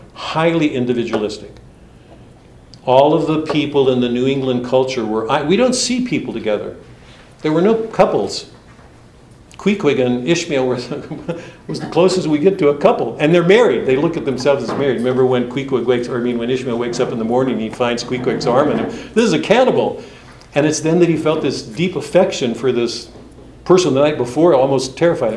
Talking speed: 200 wpm